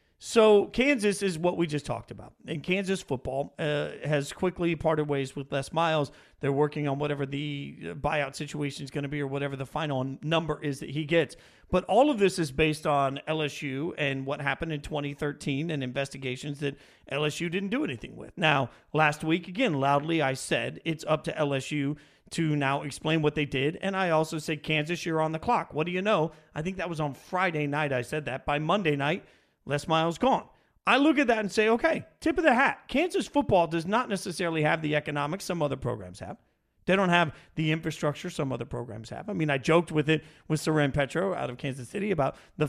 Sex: male